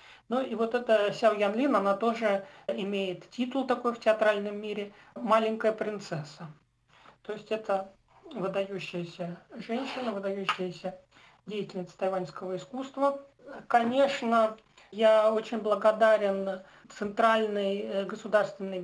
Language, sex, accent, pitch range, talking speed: Russian, male, native, 190-220 Hz, 100 wpm